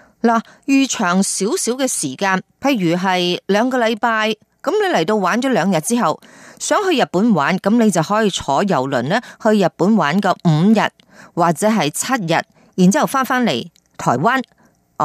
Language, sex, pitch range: Chinese, female, 175-235 Hz